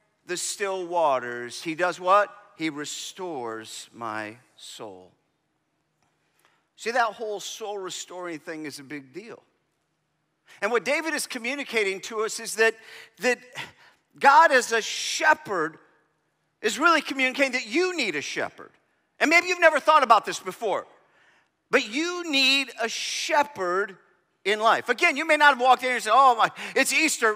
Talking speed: 155 wpm